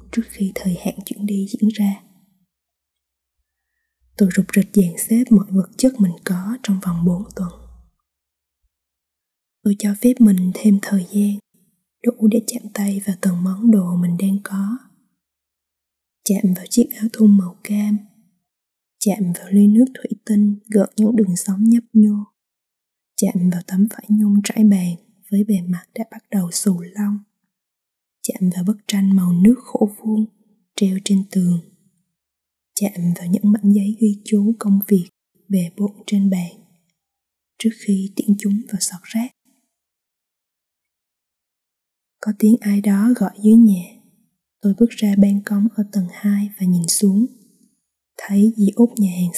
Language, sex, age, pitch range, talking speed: Vietnamese, female, 20-39, 185-215 Hz, 155 wpm